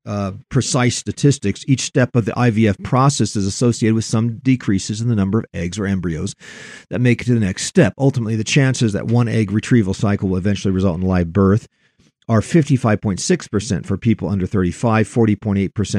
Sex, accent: male, American